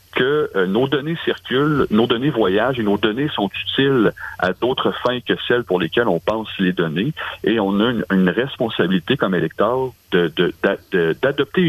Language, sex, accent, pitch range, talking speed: French, male, French, 100-150 Hz, 185 wpm